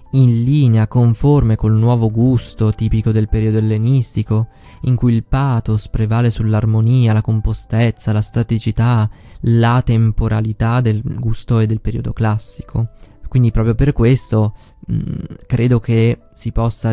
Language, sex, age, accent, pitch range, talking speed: Italian, male, 20-39, native, 110-120 Hz, 130 wpm